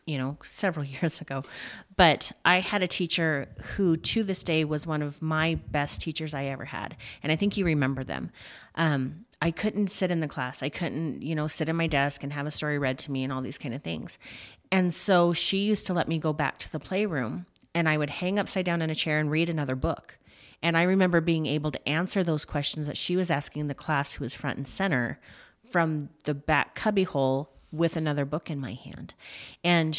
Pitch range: 140-175 Hz